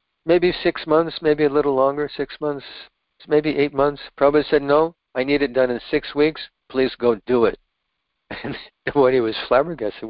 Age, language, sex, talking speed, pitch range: 60-79, English, male, 185 wpm, 110-140 Hz